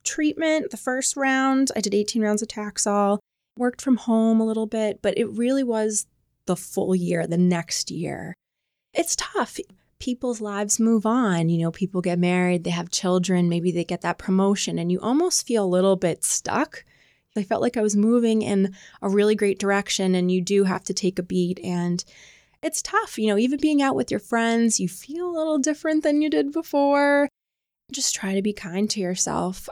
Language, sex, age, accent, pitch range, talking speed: English, female, 20-39, American, 180-225 Hz, 200 wpm